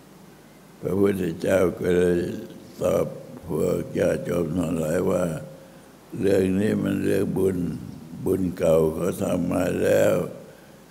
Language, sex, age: Thai, male, 60-79